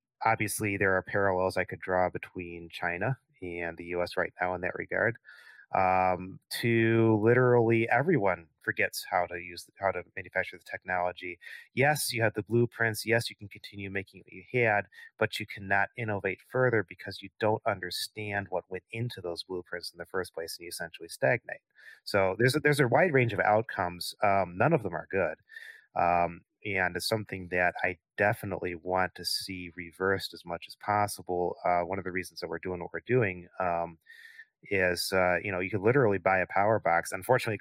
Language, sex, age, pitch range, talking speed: English, male, 30-49, 90-110 Hz, 190 wpm